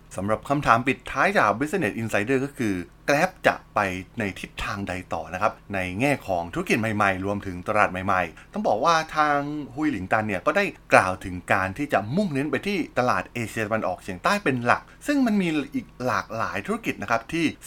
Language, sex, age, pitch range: Thai, male, 20-39, 100-150 Hz